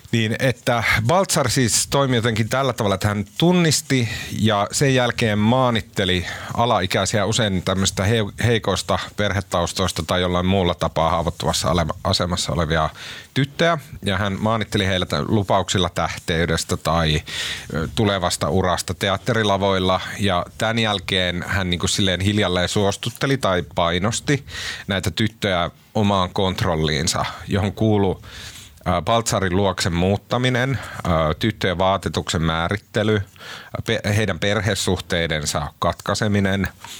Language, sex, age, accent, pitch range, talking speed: Finnish, male, 30-49, native, 90-110 Hz, 105 wpm